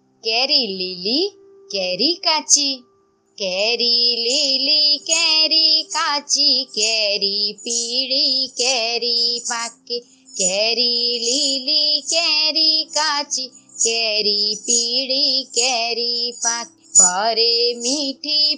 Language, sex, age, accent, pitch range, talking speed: Gujarati, female, 20-39, native, 225-295 Hz, 65 wpm